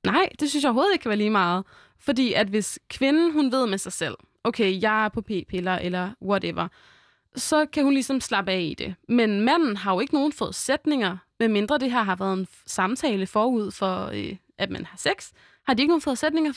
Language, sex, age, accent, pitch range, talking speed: Danish, female, 20-39, native, 200-270 Hz, 220 wpm